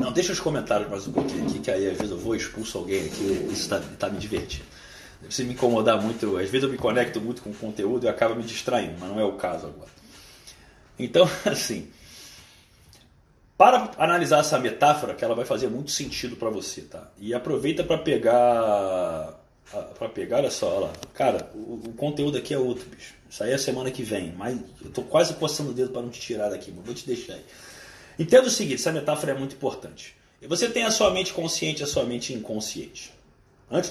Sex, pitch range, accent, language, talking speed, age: male, 115-165 Hz, Brazilian, Portuguese, 215 wpm, 30-49